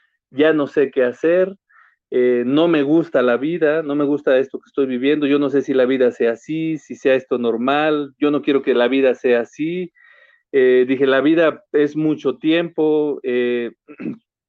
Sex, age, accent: male, 40-59, Mexican